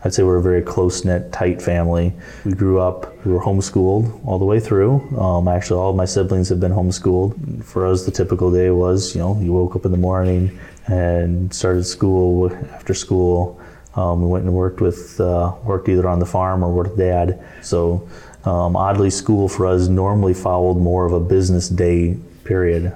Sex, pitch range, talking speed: male, 90-95 Hz, 200 wpm